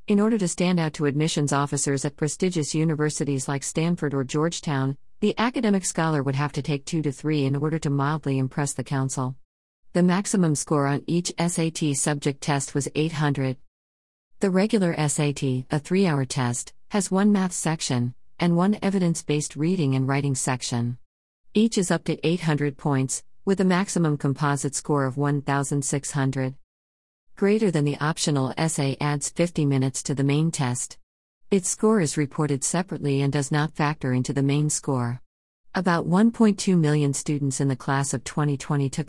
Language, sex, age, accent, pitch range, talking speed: English, female, 50-69, American, 135-165 Hz, 165 wpm